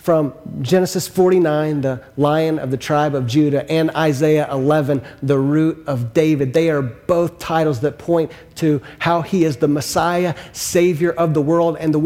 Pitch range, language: 135-165 Hz, English